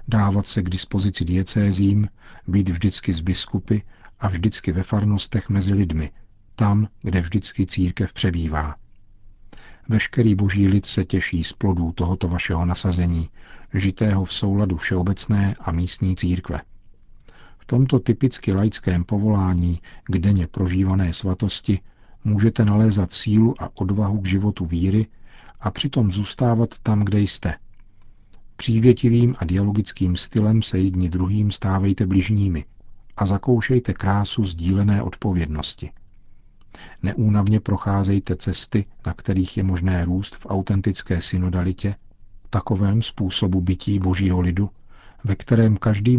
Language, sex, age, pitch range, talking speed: Czech, male, 50-69, 95-105 Hz, 120 wpm